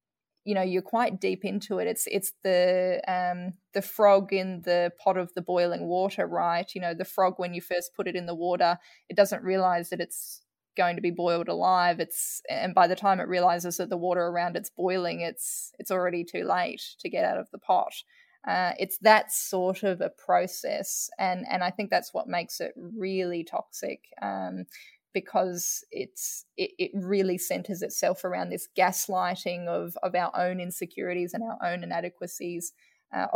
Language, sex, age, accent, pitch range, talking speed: English, female, 10-29, Australian, 175-200 Hz, 190 wpm